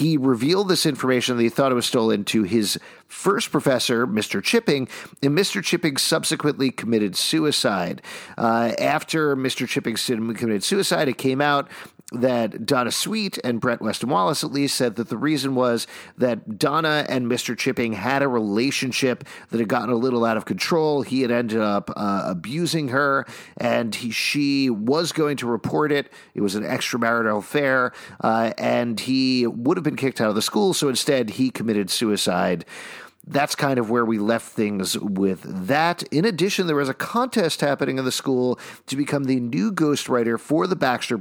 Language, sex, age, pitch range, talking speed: English, male, 40-59, 115-145 Hz, 180 wpm